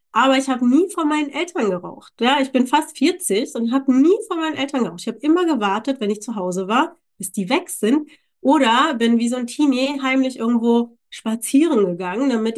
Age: 30-49